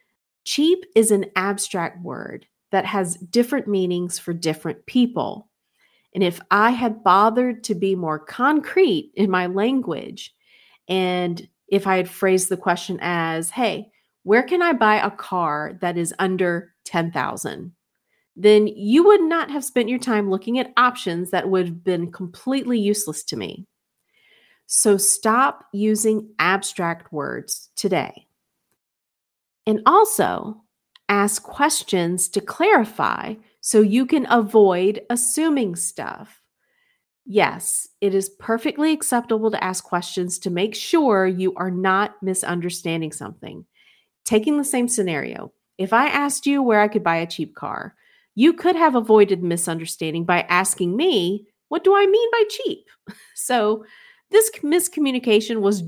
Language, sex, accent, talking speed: English, female, American, 140 wpm